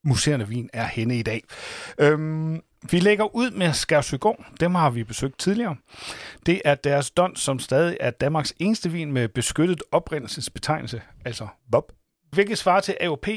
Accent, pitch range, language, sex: native, 120-165 Hz, Danish, male